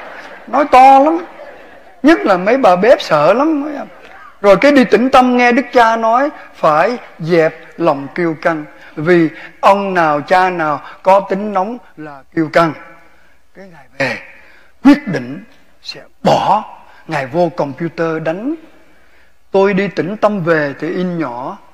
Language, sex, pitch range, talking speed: Vietnamese, male, 165-235 Hz, 150 wpm